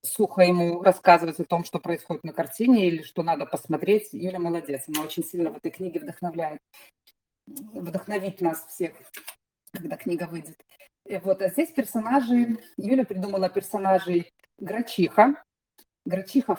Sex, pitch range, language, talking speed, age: female, 175-225 Hz, Russian, 130 wpm, 30-49